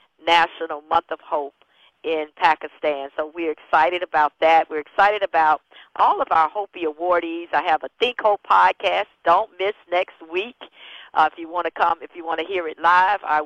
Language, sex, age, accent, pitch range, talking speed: English, female, 50-69, American, 155-185 Hz, 190 wpm